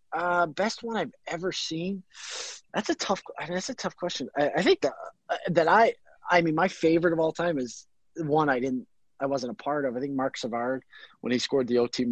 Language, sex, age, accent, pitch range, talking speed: English, male, 30-49, American, 110-155 Hz, 235 wpm